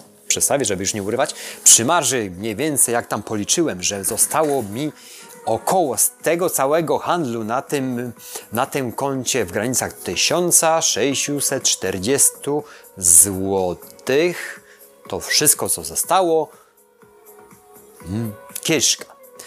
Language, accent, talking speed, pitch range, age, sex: Polish, native, 105 wpm, 115-150 Hz, 30-49, male